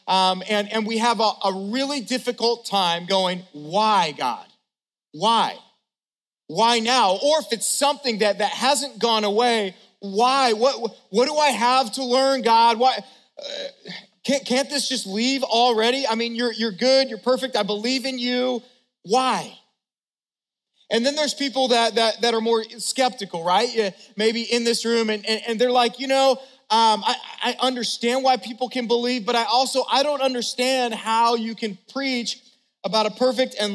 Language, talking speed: English, 175 wpm